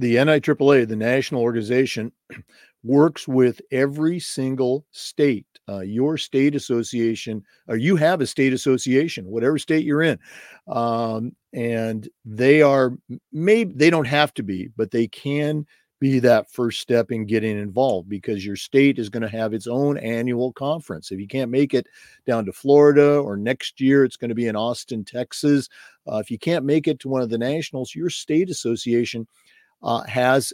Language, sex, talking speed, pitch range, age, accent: English, male, 175 wpm, 115-140 Hz, 50-69, American